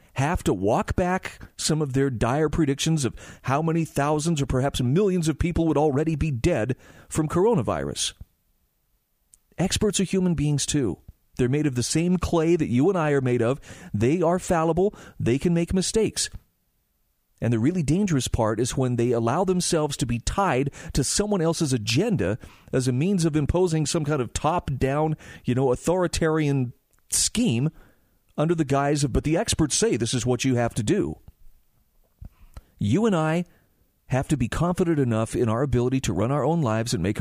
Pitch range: 125-175 Hz